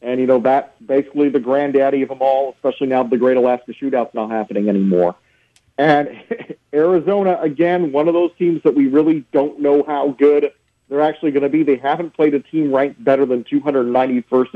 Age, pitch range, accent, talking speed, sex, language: 40-59, 125-145 Hz, American, 195 wpm, male, English